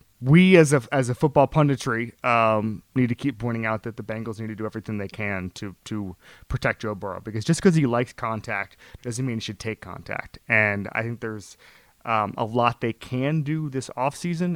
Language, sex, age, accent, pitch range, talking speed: English, male, 30-49, American, 110-130 Hz, 210 wpm